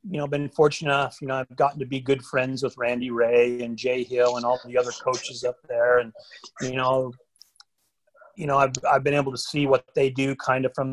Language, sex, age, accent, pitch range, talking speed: English, male, 40-59, American, 125-145 Hz, 240 wpm